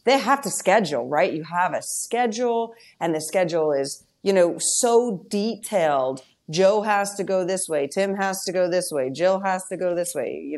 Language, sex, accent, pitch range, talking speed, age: English, female, American, 155-205 Hz, 205 wpm, 30-49